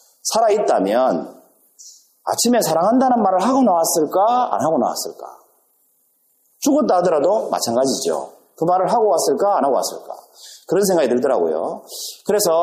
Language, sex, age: Korean, male, 40-59